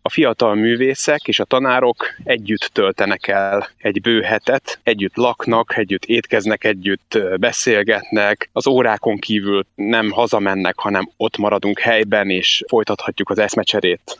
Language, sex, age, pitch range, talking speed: Hungarian, male, 30-49, 105-120 Hz, 125 wpm